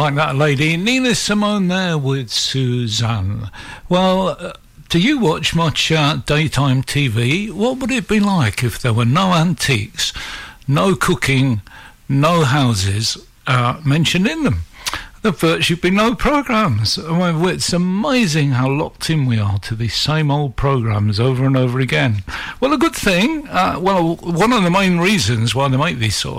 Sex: male